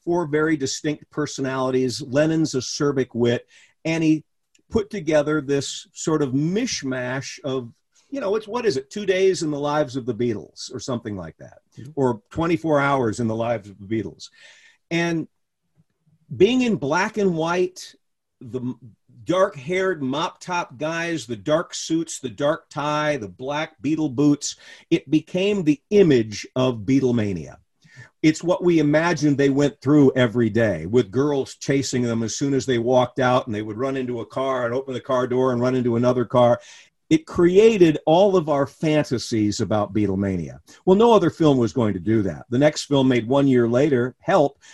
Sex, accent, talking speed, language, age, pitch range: male, American, 175 wpm, English, 50-69, 120-155 Hz